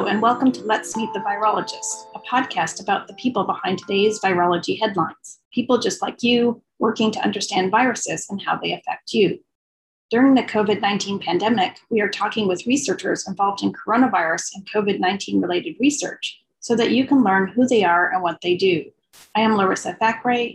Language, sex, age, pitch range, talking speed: English, female, 30-49, 200-235 Hz, 185 wpm